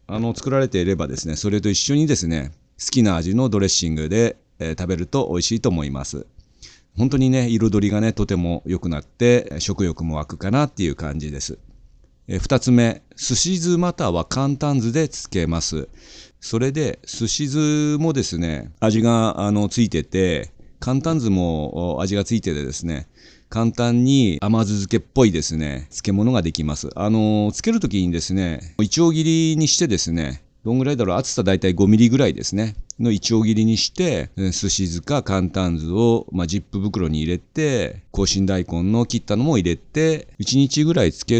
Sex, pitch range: male, 85-125 Hz